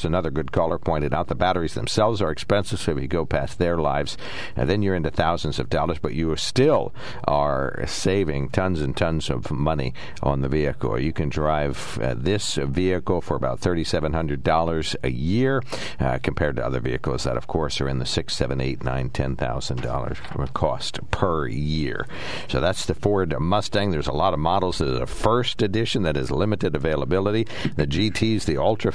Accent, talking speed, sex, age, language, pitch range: American, 195 wpm, male, 60-79, English, 75-95 Hz